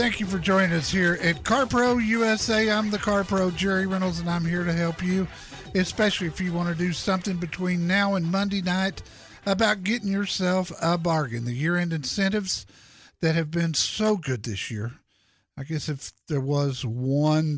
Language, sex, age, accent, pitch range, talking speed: English, male, 50-69, American, 140-195 Hz, 180 wpm